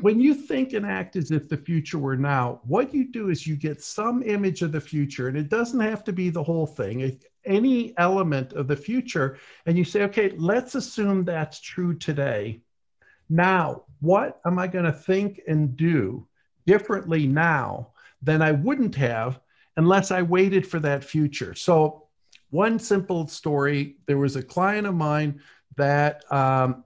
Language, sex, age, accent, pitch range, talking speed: English, male, 50-69, American, 140-185 Hz, 175 wpm